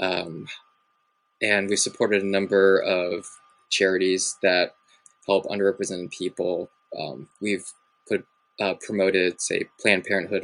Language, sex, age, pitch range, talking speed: English, male, 20-39, 95-100 Hz, 115 wpm